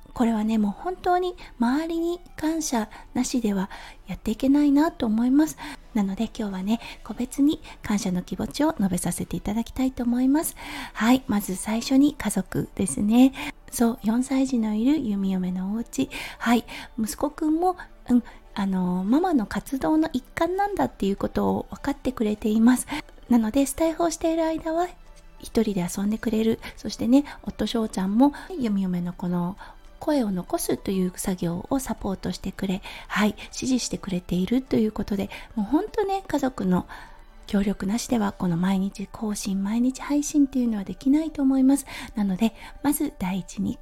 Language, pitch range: Japanese, 205-280 Hz